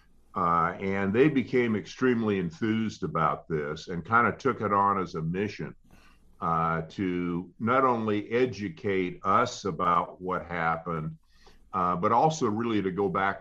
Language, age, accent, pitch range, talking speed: English, 50-69, American, 85-105 Hz, 150 wpm